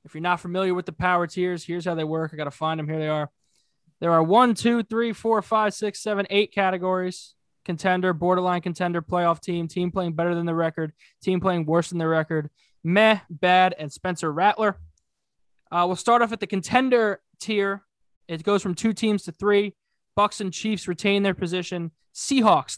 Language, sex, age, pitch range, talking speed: English, male, 20-39, 165-210 Hz, 200 wpm